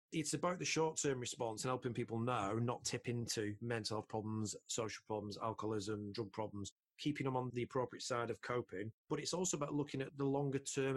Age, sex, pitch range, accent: 30-49, male, 110-135 Hz, British